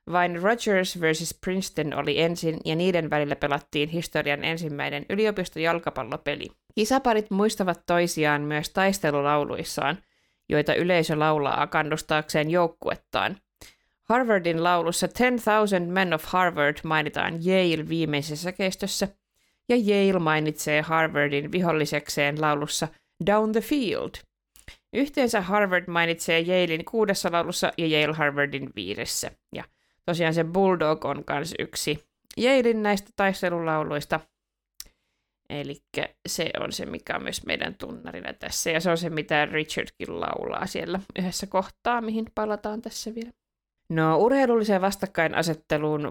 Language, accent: Finnish, native